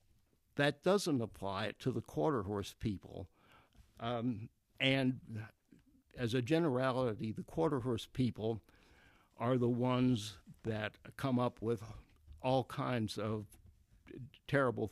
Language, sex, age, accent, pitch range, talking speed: English, male, 60-79, American, 105-135 Hz, 105 wpm